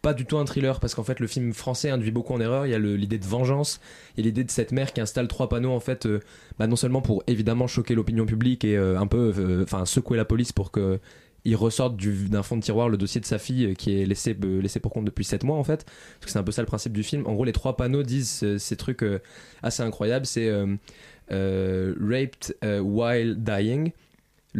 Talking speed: 260 wpm